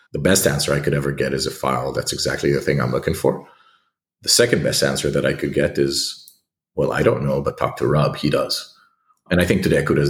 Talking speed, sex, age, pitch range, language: 250 wpm, male, 40-59, 70-115 Hz, English